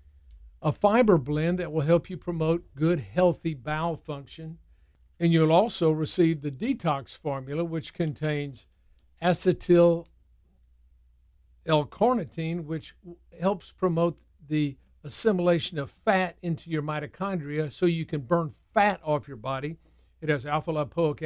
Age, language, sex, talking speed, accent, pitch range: 50-69, English, male, 120 wpm, American, 140-170 Hz